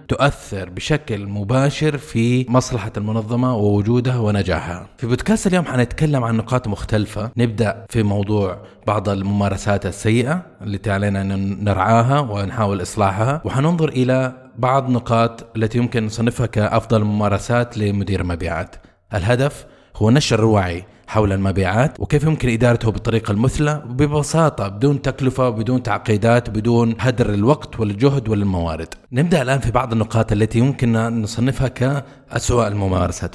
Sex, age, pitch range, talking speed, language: male, 20-39, 105-130 Hz, 120 wpm, Arabic